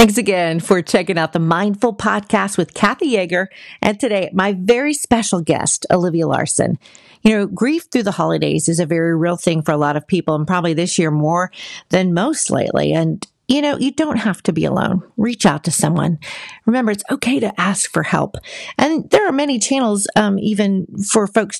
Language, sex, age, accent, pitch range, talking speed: English, female, 40-59, American, 175-235 Hz, 200 wpm